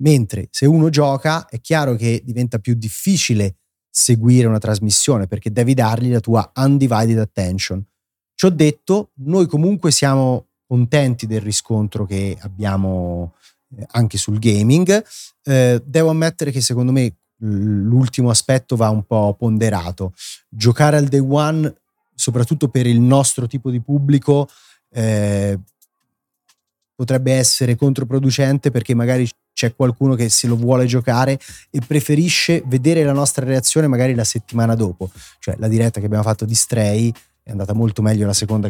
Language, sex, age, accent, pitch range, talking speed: Italian, male, 30-49, native, 110-140 Hz, 145 wpm